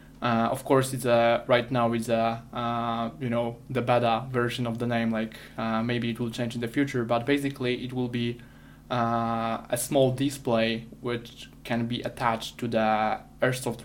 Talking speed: 185 wpm